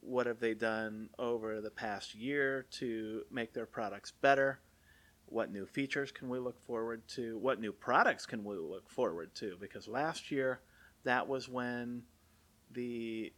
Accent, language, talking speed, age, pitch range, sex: American, English, 160 wpm, 40-59, 95-130 Hz, male